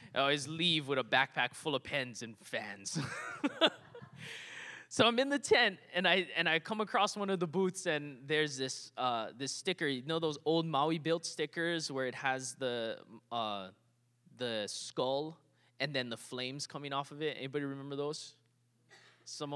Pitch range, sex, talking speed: 130-185 Hz, male, 175 wpm